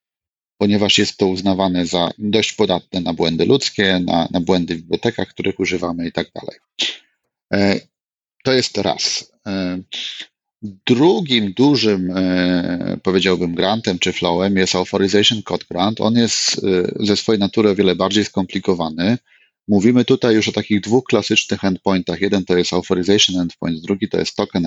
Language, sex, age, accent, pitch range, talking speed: Polish, male, 30-49, native, 90-115 Hz, 145 wpm